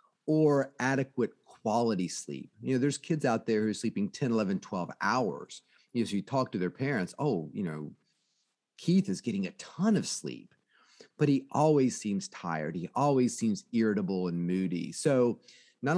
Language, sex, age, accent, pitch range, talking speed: English, male, 40-59, American, 100-135 Hz, 185 wpm